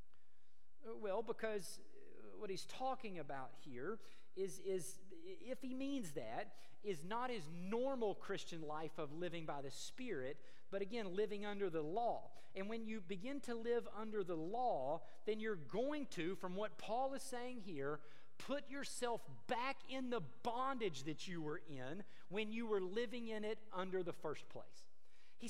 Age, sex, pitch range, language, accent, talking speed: 40-59, male, 180-260 Hz, English, American, 165 wpm